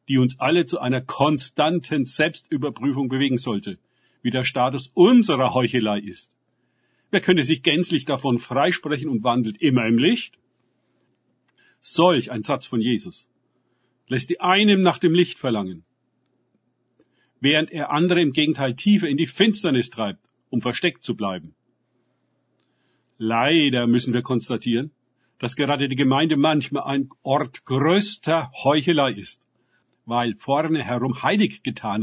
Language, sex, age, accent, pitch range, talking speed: German, male, 50-69, German, 120-160 Hz, 135 wpm